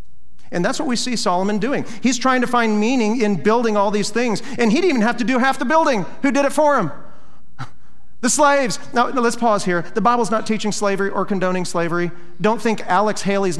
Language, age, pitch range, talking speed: English, 40-59, 170-230 Hz, 220 wpm